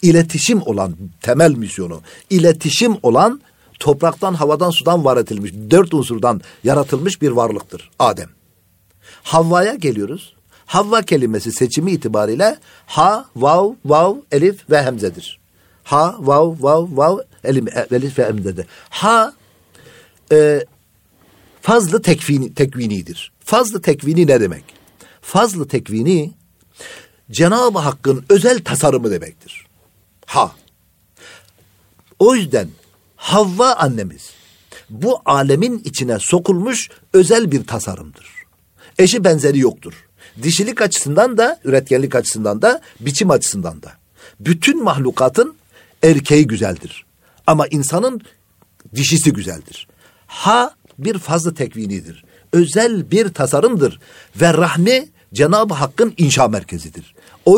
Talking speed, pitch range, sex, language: 100 wpm, 125-190 Hz, male, Turkish